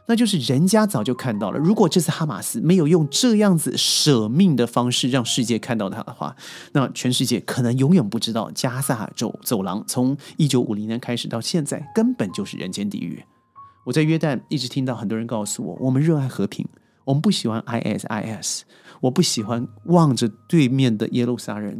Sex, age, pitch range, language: male, 30-49, 115-155 Hz, Chinese